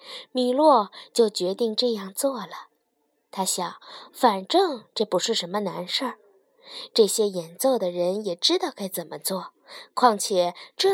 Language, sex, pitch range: Chinese, female, 190-285 Hz